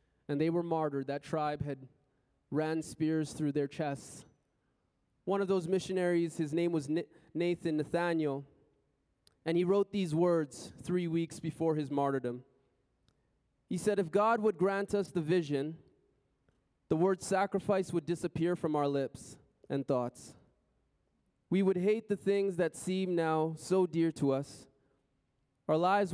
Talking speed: 150 wpm